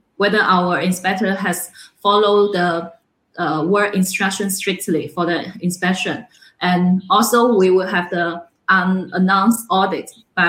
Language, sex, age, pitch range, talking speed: English, female, 20-39, 180-205 Hz, 125 wpm